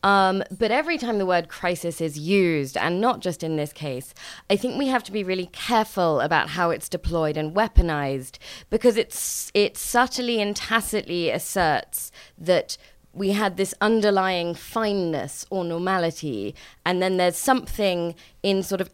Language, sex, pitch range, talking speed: English, female, 165-210 Hz, 160 wpm